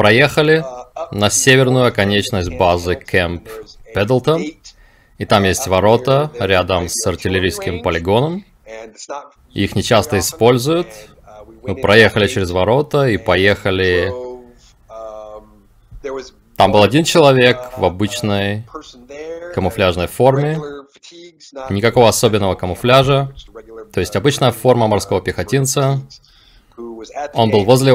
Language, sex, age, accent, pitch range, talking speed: Russian, male, 30-49, native, 95-130 Hz, 95 wpm